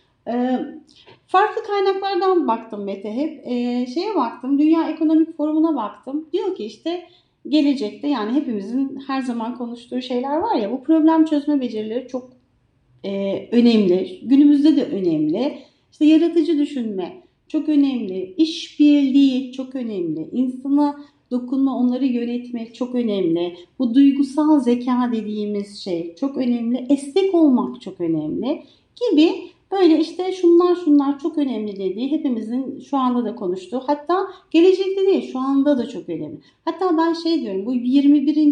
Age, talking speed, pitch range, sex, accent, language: 40-59, 135 wpm, 240-310 Hz, female, native, Turkish